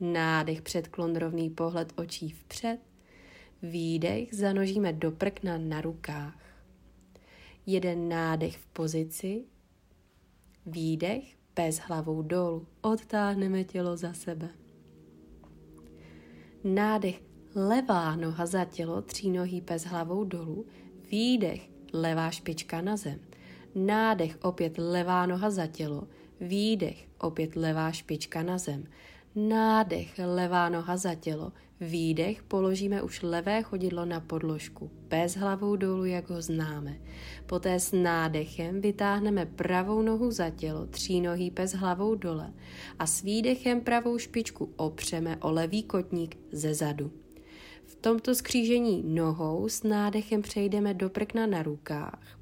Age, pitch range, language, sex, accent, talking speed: 30-49, 160-200 Hz, Czech, female, native, 120 wpm